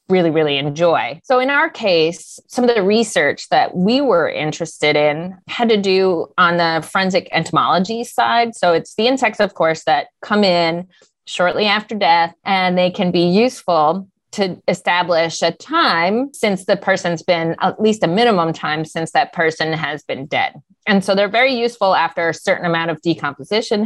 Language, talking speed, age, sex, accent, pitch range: English, 180 wpm, 20-39, female, American, 170-230 Hz